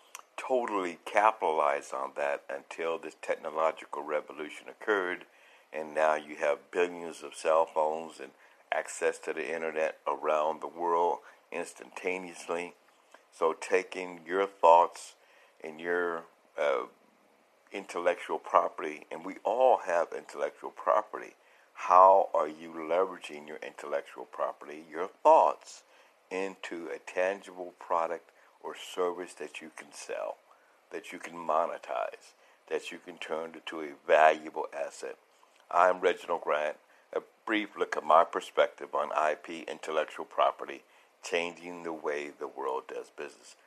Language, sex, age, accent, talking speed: English, male, 60-79, American, 125 wpm